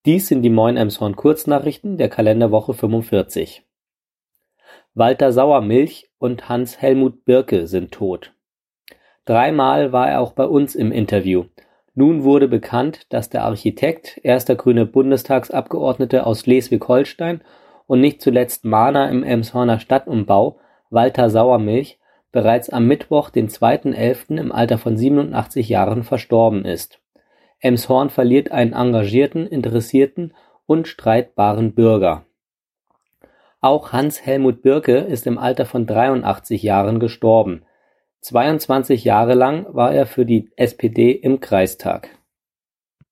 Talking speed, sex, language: 120 wpm, male, German